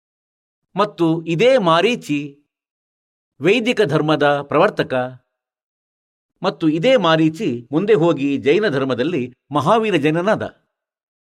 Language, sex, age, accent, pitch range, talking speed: Kannada, male, 50-69, native, 145-205 Hz, 80 wpm